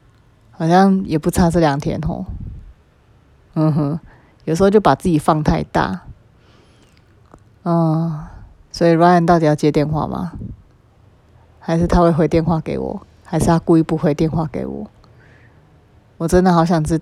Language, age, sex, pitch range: Chinese, 30-49, female, 115-175 Hz